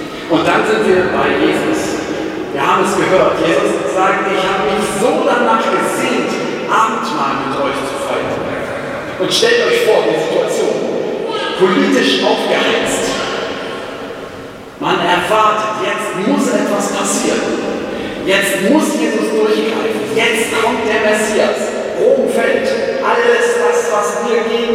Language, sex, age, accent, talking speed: German, male, 40-59, German, 130 wpm